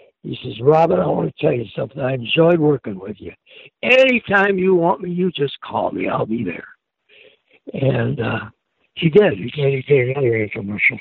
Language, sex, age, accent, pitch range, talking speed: English, male, 60-79, American, 125-160 Hz, 180 wpm